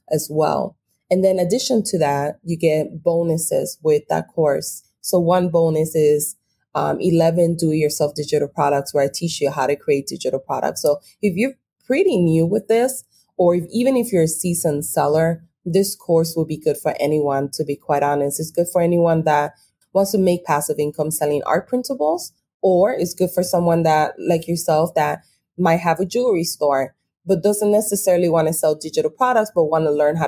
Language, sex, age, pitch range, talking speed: English, female, 20-39, 150-180 Hz, 200 wpm